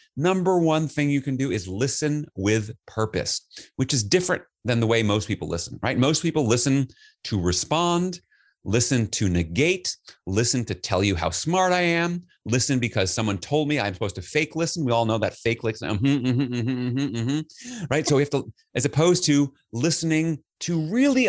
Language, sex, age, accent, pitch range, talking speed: English, male, 30-49, American, 105-165 Hz, 180 wpm